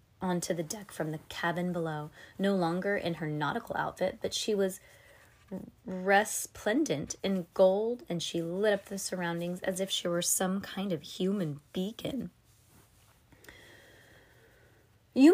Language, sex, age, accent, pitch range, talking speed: English, female, 20-39, American, 165-210 Hz, 135 wpm